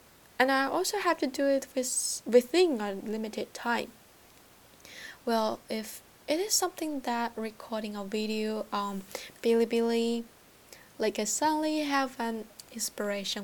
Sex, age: female, 10-29